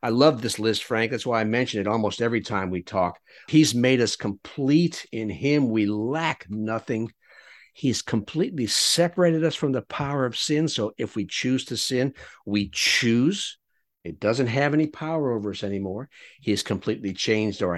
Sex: male